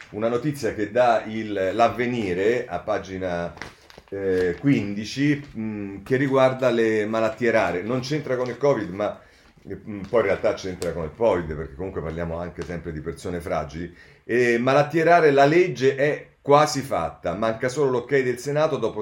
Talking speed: 150 wpm